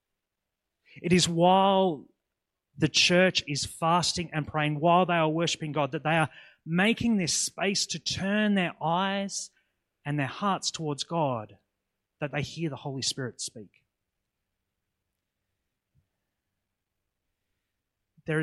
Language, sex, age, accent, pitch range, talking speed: English, male, 30-49, Australian, 125-165 Hz, 120 wpm